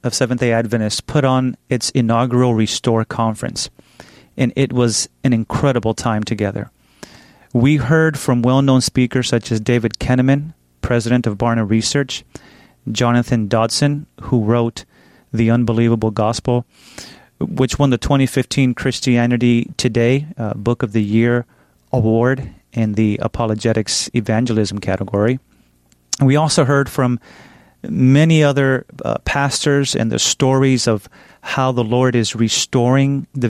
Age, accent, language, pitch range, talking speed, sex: 30-49, American, English, 115-135 Hz, 125 wpm, male